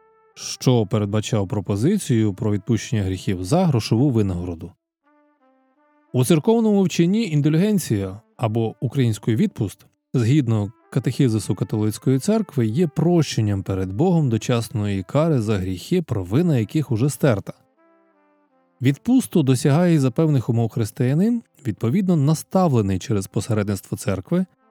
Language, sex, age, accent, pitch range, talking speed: Ukrainian, male, 20-39, native, 110-155 Hz, 105 wpm